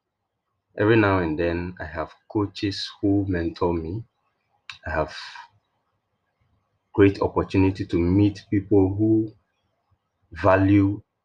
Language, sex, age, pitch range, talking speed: English, male, 30-49, 85-105 Hz, 100 wpm